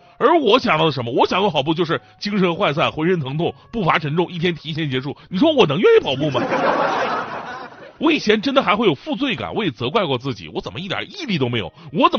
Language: Chinese